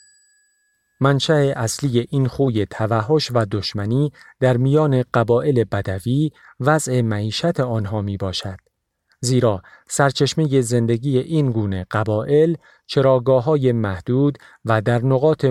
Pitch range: 110-140 Hz